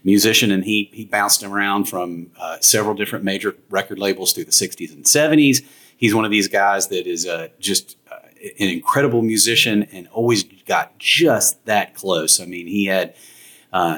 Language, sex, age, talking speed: English, male, 40-59, 180 wpm